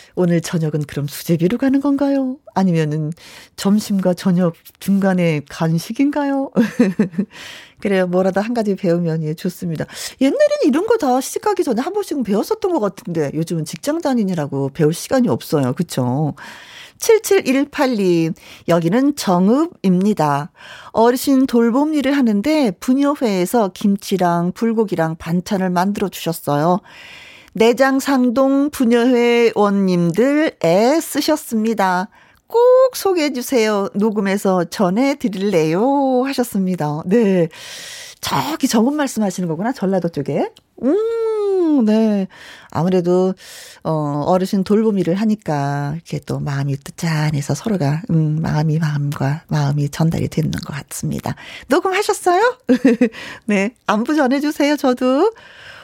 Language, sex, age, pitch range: Korean, female, 40-59, 170-270 Hz